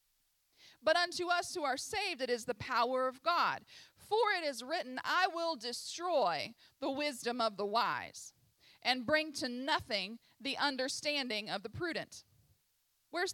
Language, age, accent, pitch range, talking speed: English, 40-59, American, 255-355 Hz, 155 wpm